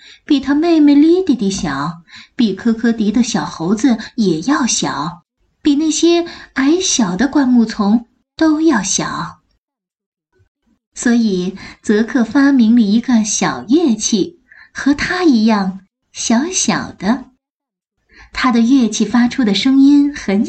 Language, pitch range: Chinese, 210-285 Hz